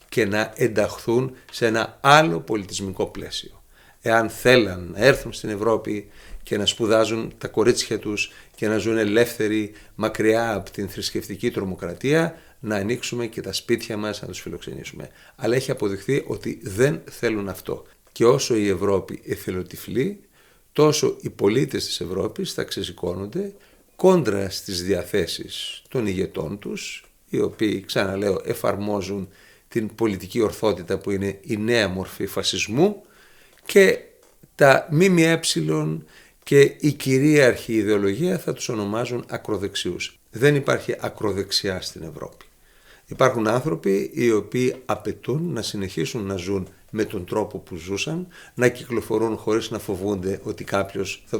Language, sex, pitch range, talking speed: Greek, male, 100-125 Hz, 135 wpm